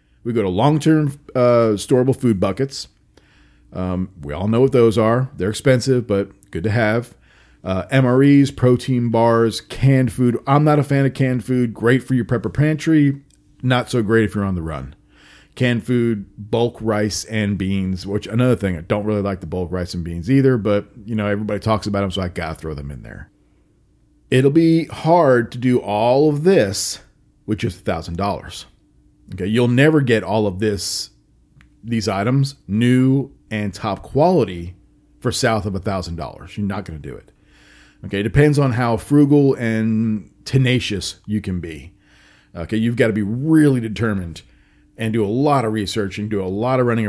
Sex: male